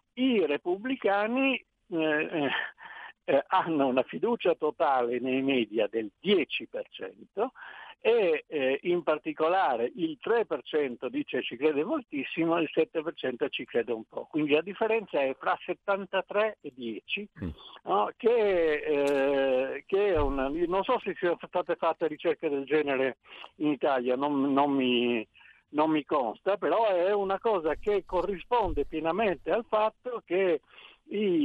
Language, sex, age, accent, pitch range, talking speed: Italian, male, 60-79, native, 130-205 Hz, 135 wpm